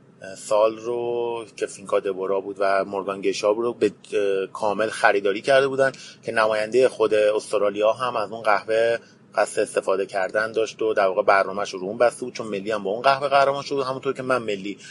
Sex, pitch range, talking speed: male, 110-130 Hz, 180 wpm